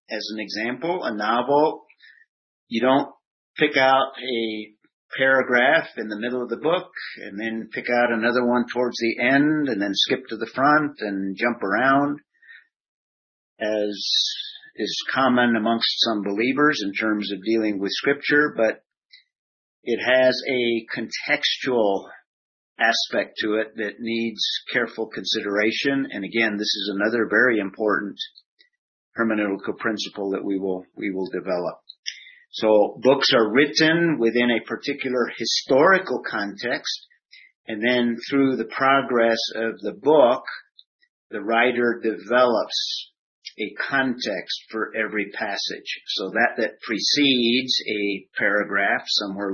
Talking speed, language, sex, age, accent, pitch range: 130 wpm, English, male, 50-69, American, 105-140 Hz